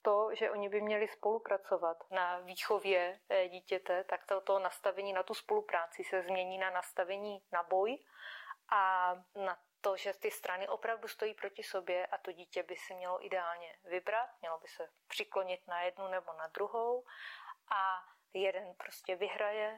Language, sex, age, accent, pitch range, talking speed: Czech, female, 30-49, native, 185-215 Hz, 160 wpm